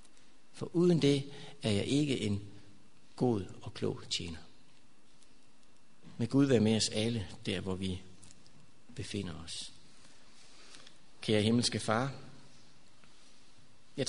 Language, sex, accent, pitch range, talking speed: Danish, male, native, 115-145 Hz, 110 wpm